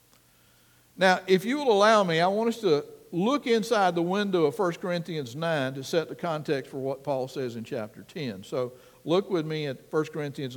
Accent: American